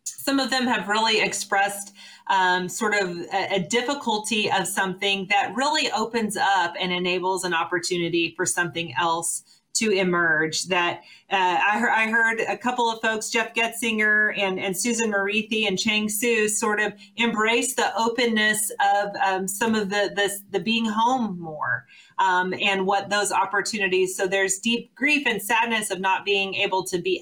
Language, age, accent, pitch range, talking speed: English, 40-59, American, 185-225 Hz, 170 wpm